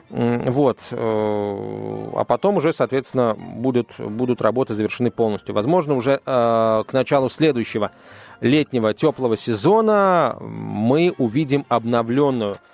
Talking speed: 100 wpm